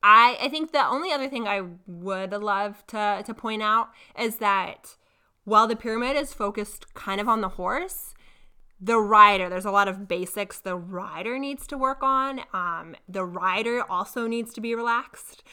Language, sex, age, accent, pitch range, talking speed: English, female, 20-39, American, 190-240 Hz, 180 wpm